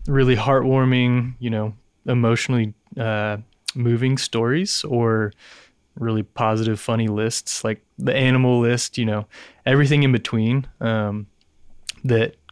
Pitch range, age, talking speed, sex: 110-125 Hz, 20-39, 115 wpm, male